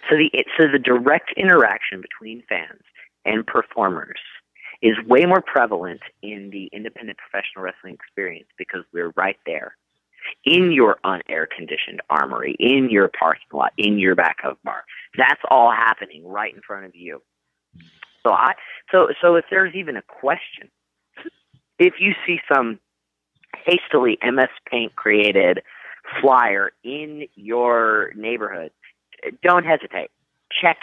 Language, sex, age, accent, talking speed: English, male, 40-59, American, 130 wpm